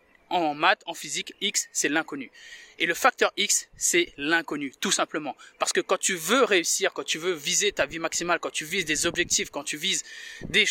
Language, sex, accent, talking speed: French, male, French, 205 wpm